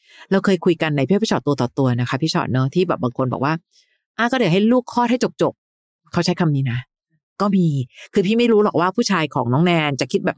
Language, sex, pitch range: Thai, female, 145-195 Hz